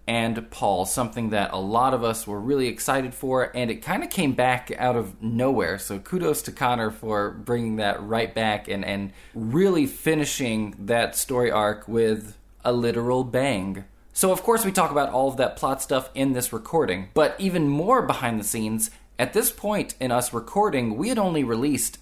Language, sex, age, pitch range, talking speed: English, male, 20-39, 110-140 Hz, 195 wpm